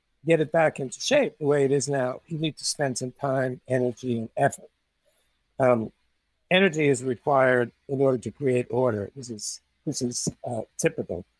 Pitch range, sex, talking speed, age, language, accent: 125-155 Hz, male, 180 wpm, 60-79, English, American